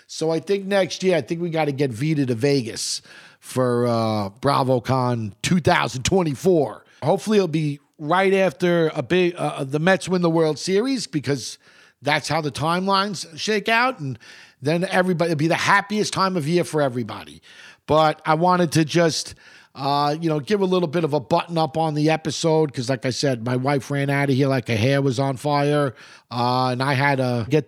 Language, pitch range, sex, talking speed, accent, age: English, 135-170 Hz, male, 205 wpm, American, 50-69